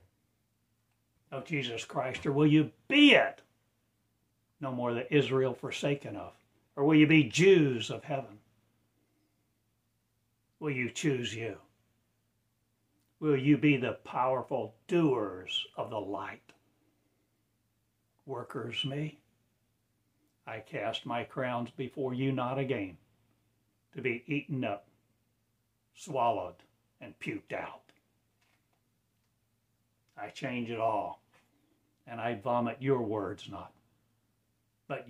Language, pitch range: English, 110-135 Hz